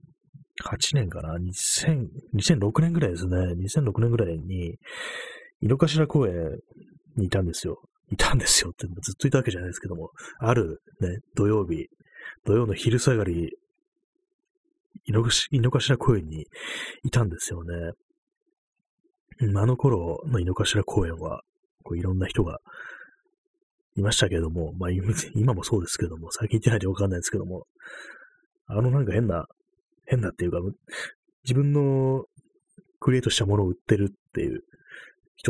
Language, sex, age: Japanese, male, 30-49